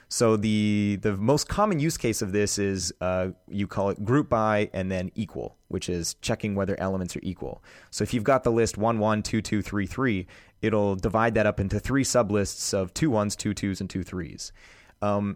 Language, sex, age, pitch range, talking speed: English, male, 30-49, 95-120 Hz, 210 wpm